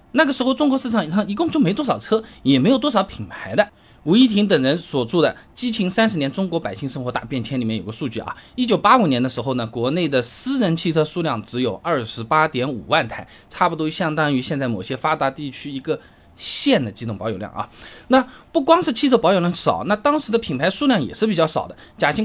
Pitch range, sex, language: 125-215 Hz, male, Chinese